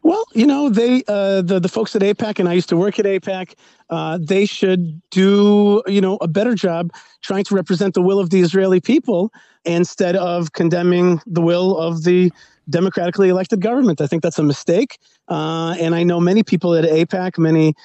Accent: American